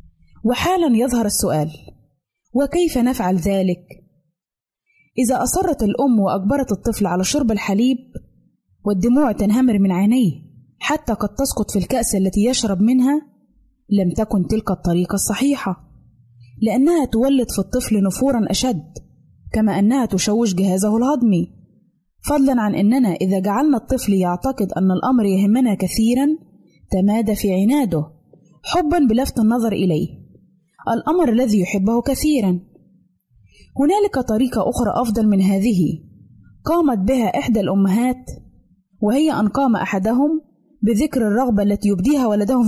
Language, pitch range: Arabic, 190-255 Hz